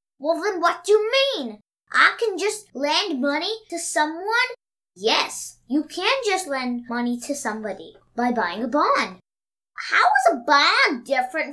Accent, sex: American, female